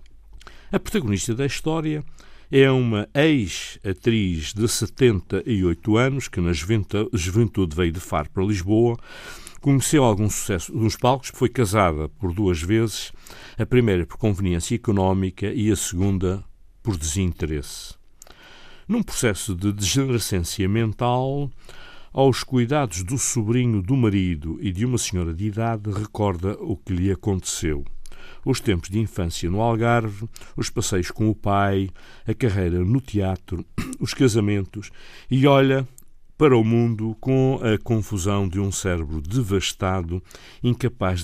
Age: 60-79